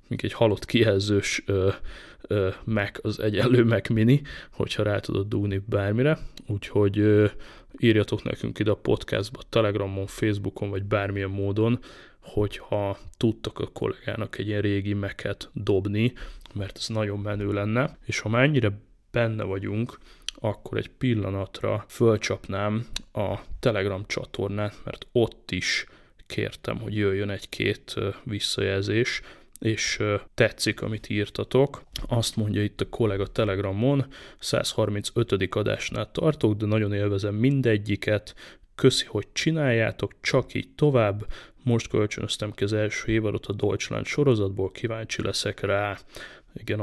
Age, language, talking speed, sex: 20-39, Hungarian, 125 wpm, male